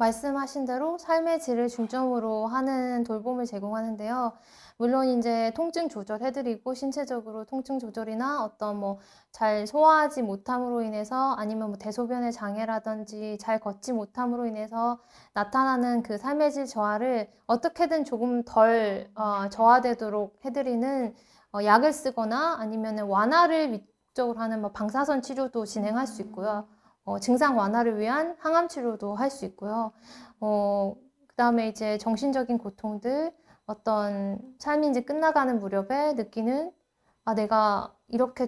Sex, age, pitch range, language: female, 20-39, 215-265 Hz, Korean